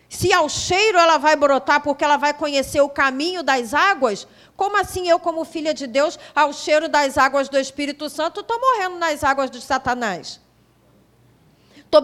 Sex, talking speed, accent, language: female, 175 wpm, Brazilian, Portuguese